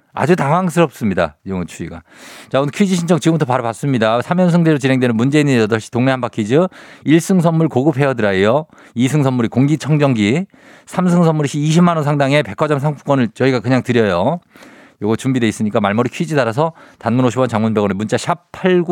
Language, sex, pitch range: Korean, male, 105-150 Hz